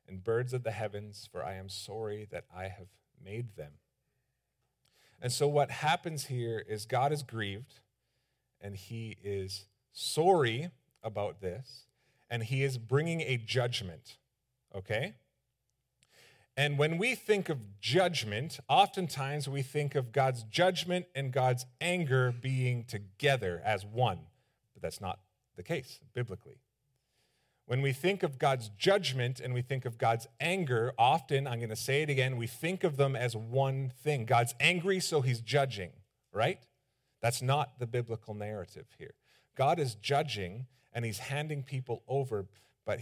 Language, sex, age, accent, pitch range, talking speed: English, male, 40-59, American, 110-140 Hz, 150 wpm